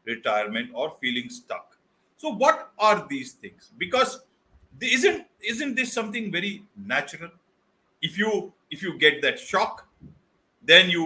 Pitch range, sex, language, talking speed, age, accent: 155-230 Hz, male, English, 130 wpm, 50-69, Indian